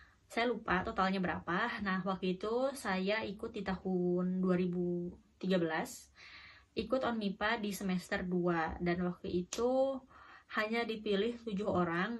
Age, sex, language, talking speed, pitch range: 20-39, female, Indonesian, 125 wpm, 185-230 Hz